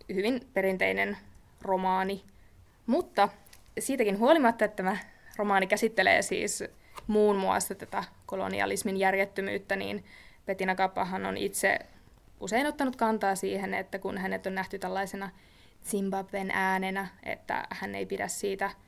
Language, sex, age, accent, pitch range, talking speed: Finnish, female, 20-39, native, 185-205 Hz, 120 wpm